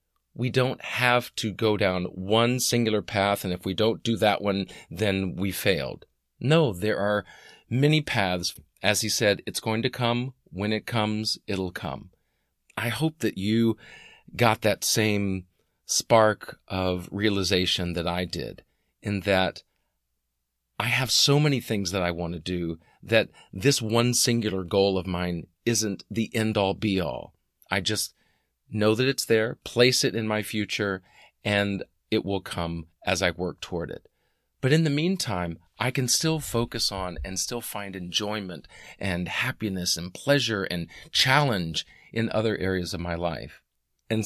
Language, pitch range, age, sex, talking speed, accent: English, 90-115 Hz, 40-59, male, 160 wpm, American